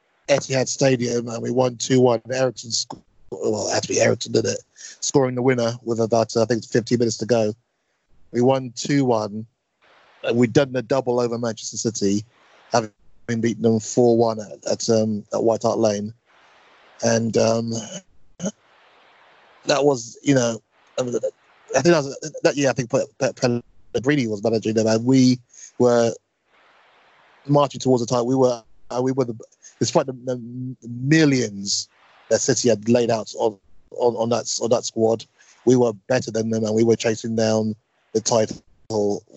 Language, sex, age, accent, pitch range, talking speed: English, male, 30-49, British, 110-130 Hz, 165 wpm